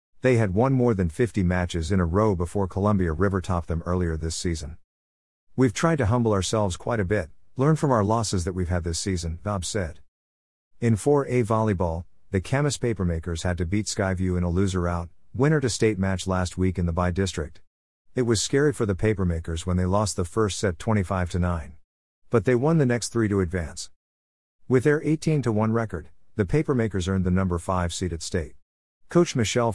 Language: English